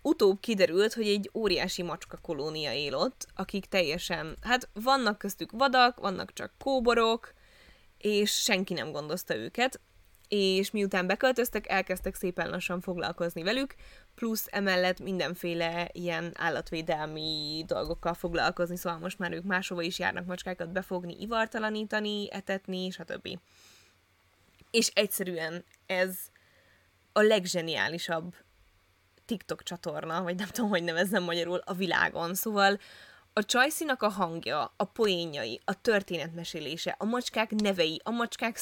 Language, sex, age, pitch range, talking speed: Hungarian, female, 20-39, 170-215 Hz, 120 wpm